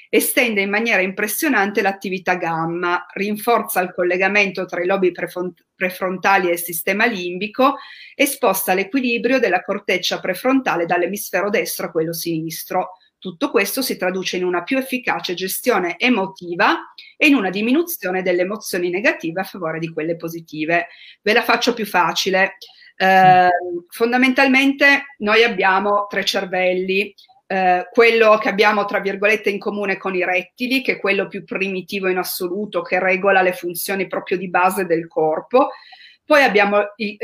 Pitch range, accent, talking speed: 180-230 Hz, native, 145 wpm